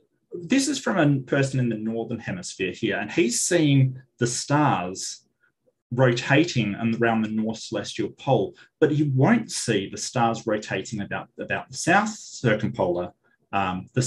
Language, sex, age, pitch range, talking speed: English, male, 30-49, 115-145 Hz, 150 wpm